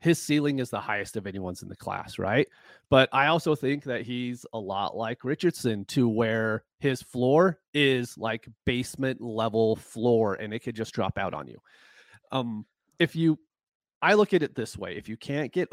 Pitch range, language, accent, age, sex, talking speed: 105-135 Hz, English, American, 30-49, male, 195 wpm